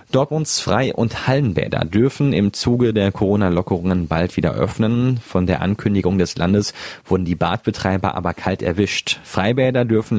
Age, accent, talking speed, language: 30-49, German, 145 wpm, German